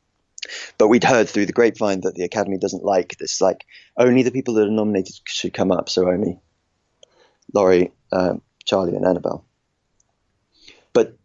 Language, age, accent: English, 20-39, British